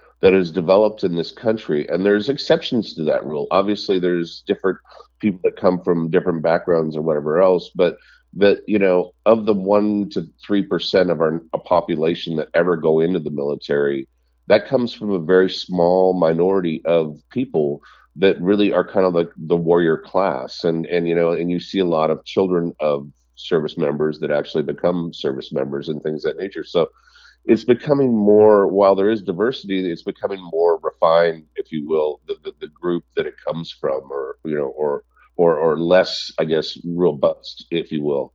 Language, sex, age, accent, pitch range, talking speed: English, male, 50-69, American, 80-105 Hz, 190 wpm